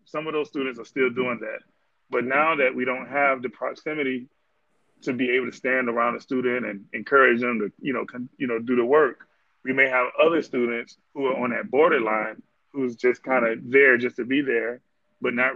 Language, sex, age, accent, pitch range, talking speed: English, male, 20-39, American, 115-135 Hz, 220 wpm